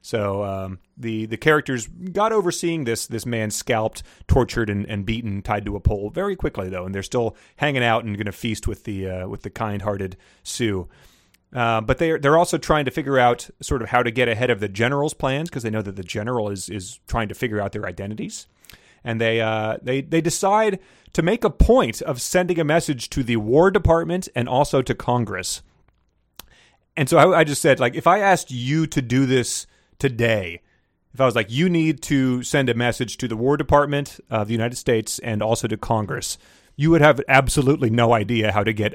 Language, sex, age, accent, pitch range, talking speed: English, male, 30-49, American, 105-140 Hz, 215 wpm